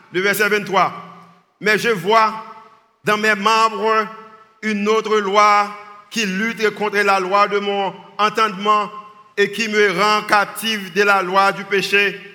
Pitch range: 200-220 Hz